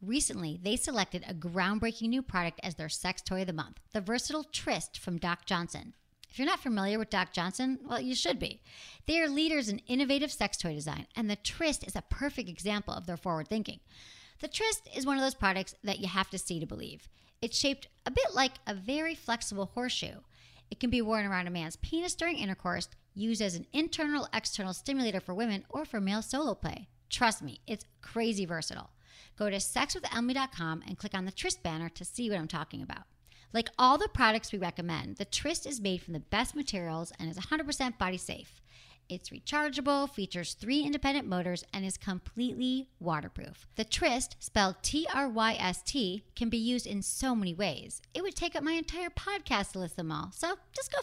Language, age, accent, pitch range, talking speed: English, 40-59, American, 180-270 Hz, 200 wpm